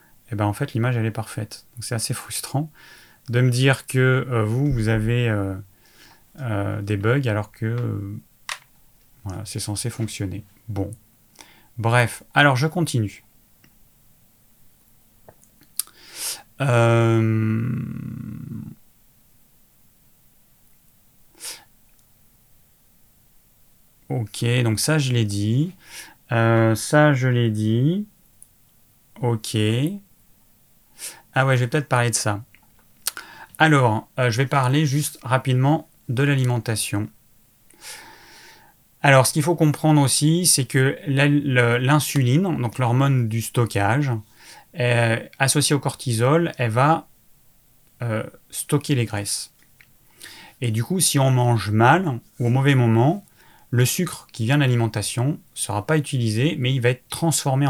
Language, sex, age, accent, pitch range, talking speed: French, male, 30-49, French, 110-140 Hz, 120 wpm